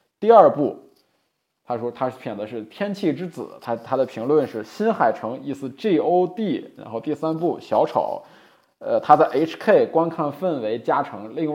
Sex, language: male, Chinese